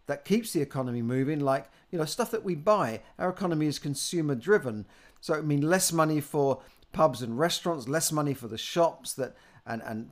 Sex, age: male, 50-69